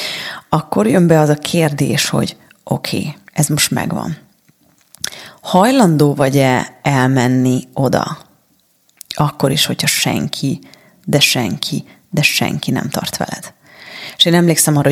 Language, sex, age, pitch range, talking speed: Hungarian, female, 30-49, 140-175 Hz, 120 wpm